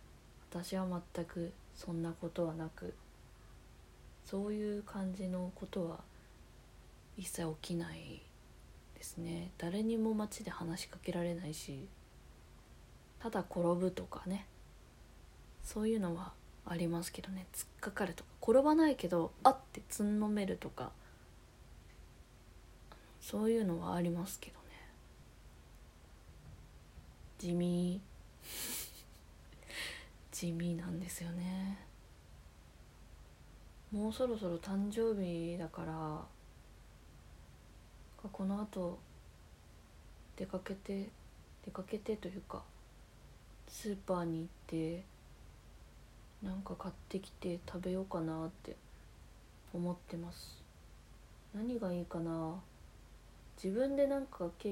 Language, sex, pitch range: Japanese, female, 165-195 Hz